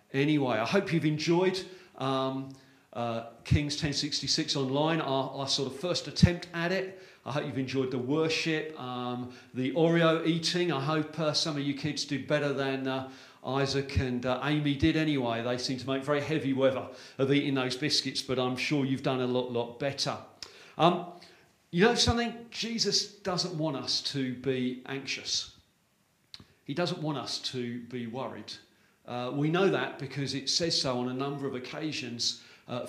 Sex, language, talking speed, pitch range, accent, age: male, English, 175 wpm, 130-165 Hz, British, 40-59